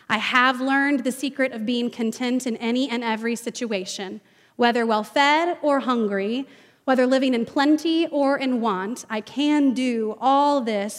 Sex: female